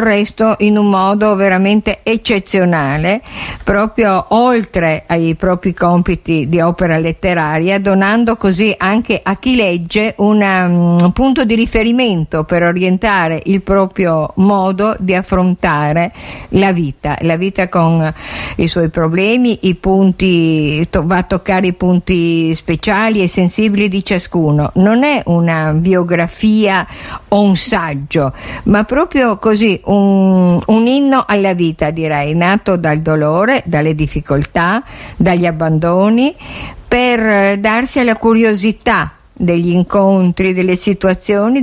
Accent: native